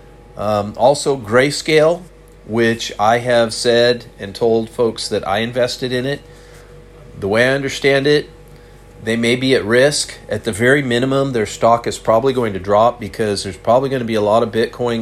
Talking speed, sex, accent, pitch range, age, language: 180 wpm, male, American, 105-125 Hz, 40-59, English